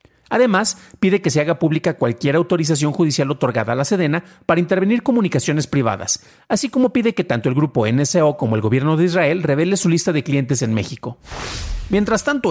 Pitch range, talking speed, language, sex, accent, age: 130-195 Hz, 185 wpm, Spanish, male, Mexican, 40-59